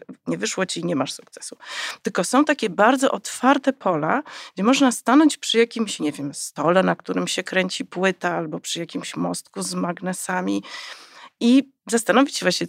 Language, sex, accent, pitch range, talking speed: Polish, female, native, 180-250 Hz, 170 wpm